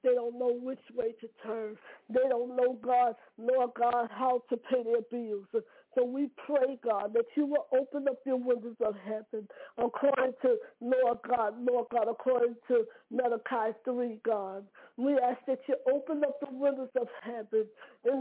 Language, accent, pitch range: English, American, 230-270 Hz